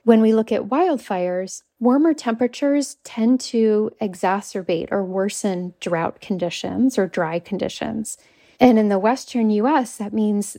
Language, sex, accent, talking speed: English, female, American, 135 wpm